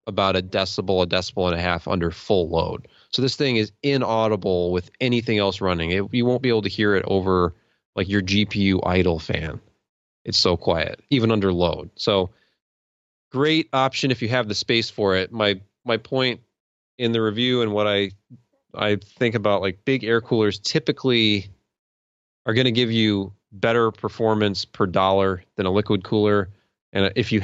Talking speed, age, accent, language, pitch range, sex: 180 wpm, 30-49, American, English, 95-115 Hz, male